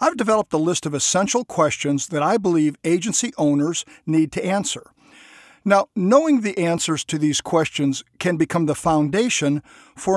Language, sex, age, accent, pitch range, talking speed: English, male, 50-69, American, 150-185 Hz, 160 wpm